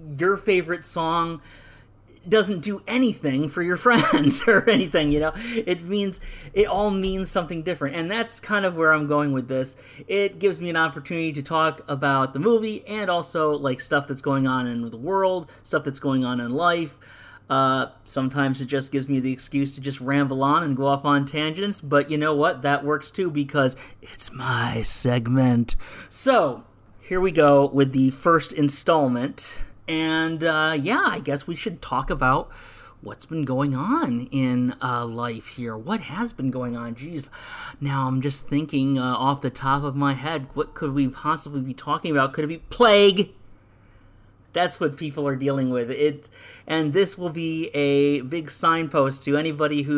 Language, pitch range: English, 135-165 Hz